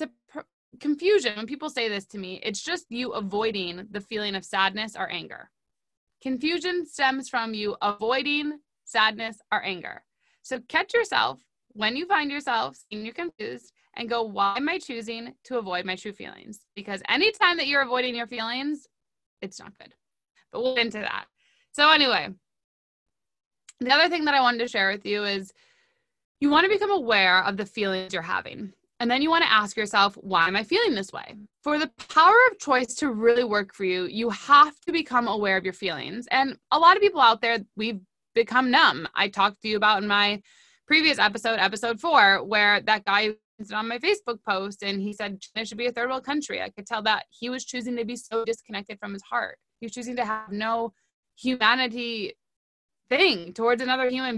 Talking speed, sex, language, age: 200 wpm, female, English, 20-39